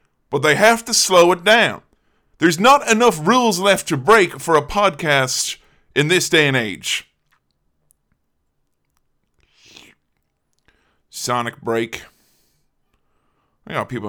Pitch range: 110-160 Hz